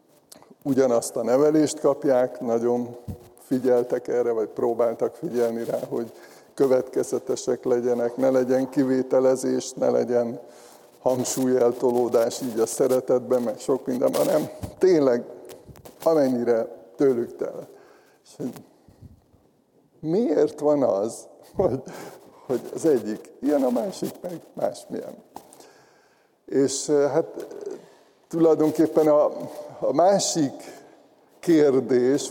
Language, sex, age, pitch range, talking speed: Hungarian, male, 60-79, 120-150 Hz, 95 wpm